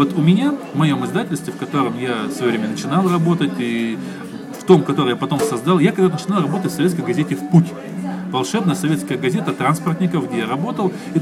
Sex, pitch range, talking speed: male, 140-180 Hz, 205 wpm